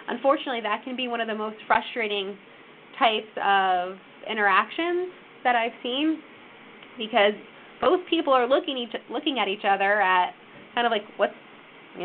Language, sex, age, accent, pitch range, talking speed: English, female, 20-39, American, 220-280 Hz, 155 wpm